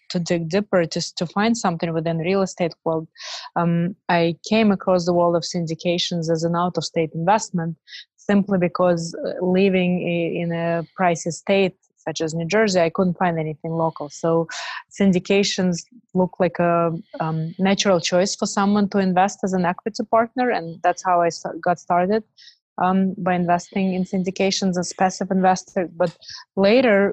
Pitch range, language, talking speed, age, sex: 170-195 Hz, English, 160 wpm, 20-39, female